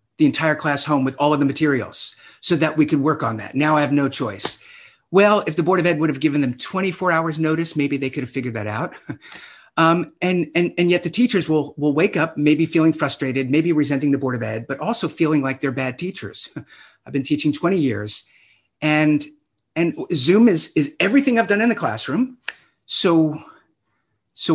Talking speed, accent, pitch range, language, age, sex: 210 wpm, American, 130-165 Hz, English, 50-69, male